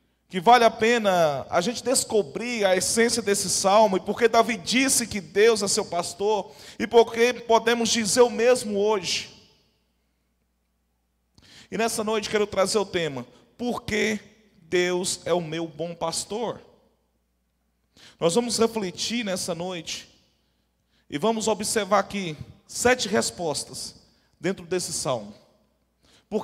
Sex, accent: male, Brazilian